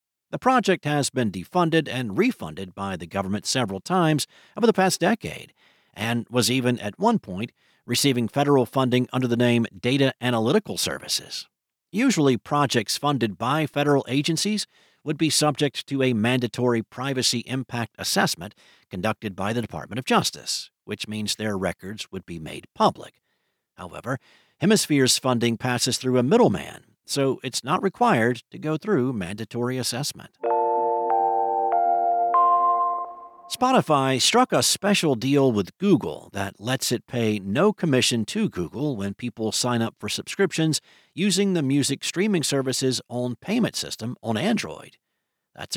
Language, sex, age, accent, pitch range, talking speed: English, male, 50-69, American, 115-155 Hz, 140 wpm